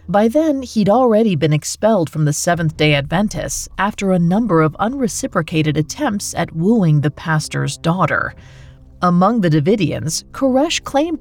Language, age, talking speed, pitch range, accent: English, 40-59, 140 wpm, 150-225 Hz, American